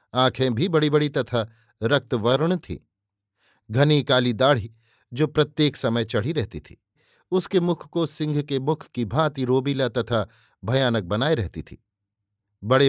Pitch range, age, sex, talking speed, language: 115-150 Hz, 50-69, male, 145 wpm, Hindi